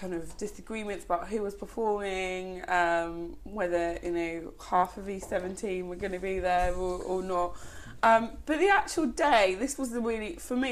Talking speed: 190 wpm